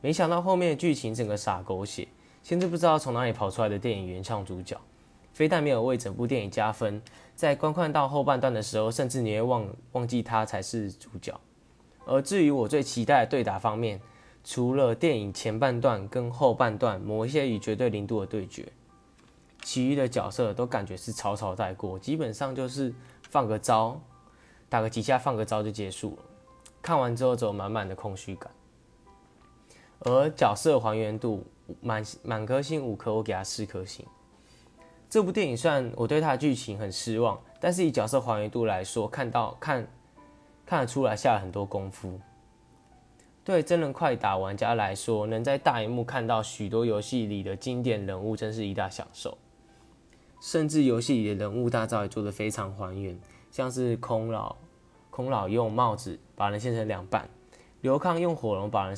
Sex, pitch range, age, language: male, 105-130 Hz, 10-29, Chinese